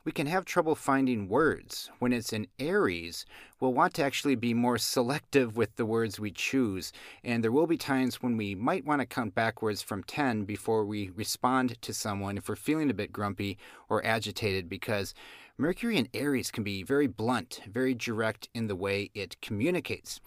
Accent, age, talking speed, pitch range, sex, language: American, 40-59, 190 wpm, 105-135 Hz, male, English